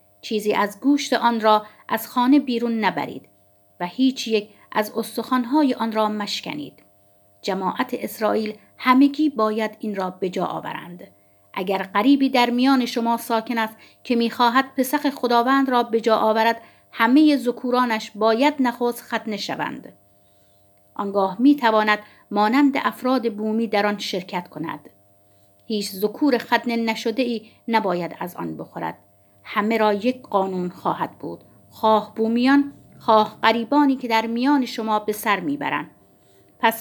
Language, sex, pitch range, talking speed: Persian, female, 210-260 Hz, 130 wpm